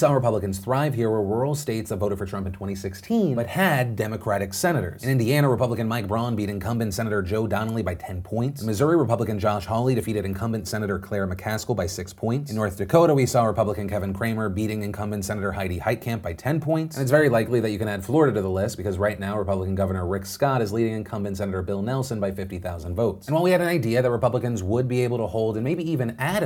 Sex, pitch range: male, 105-135 Hz